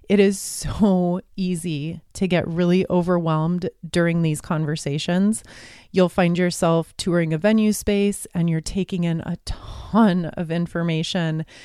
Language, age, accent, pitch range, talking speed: English, 30-49, American, 170-200 Hz, 135 wpm